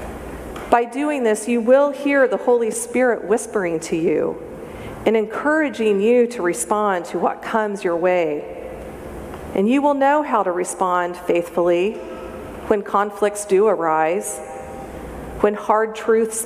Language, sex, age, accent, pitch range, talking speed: English, female, 40-59, American, 185-230 Hz, 135 wpm